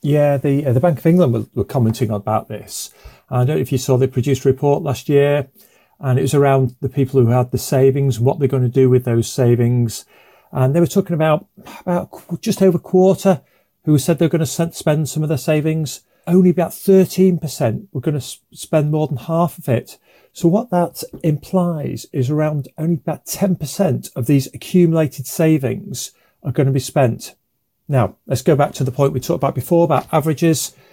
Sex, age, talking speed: male, 40-59, 200 wpm